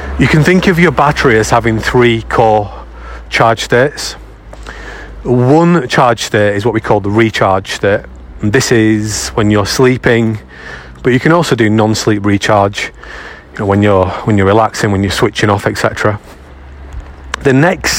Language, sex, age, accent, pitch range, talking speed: English, male, 30-49, British, 105-120 Hz, 165 wpm